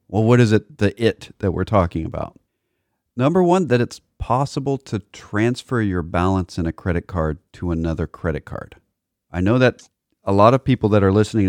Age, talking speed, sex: 40-59, 195 wpm, male